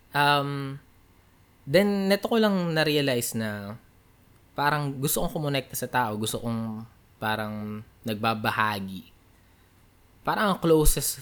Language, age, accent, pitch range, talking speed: Filipino, 20-39, native, 100-125 Hz, 100 wpm